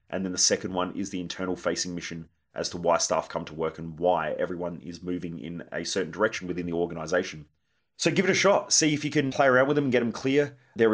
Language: English